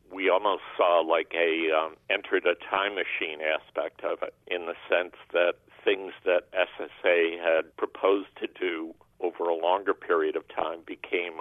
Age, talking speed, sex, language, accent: 60-79, 165 wpm, male, English, American